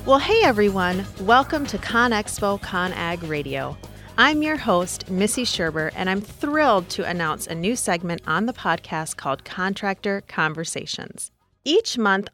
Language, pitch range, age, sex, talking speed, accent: English, 160-230 Hz, 30-49, female, 140 wpm, American